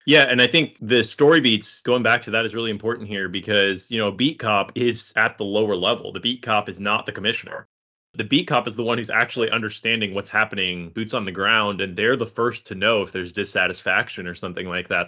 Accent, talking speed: American, 240 wpm